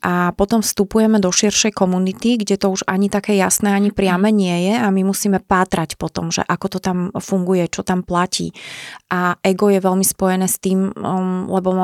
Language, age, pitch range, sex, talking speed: Slovak, 20-39, 180-195 Hz, female, 190 wpm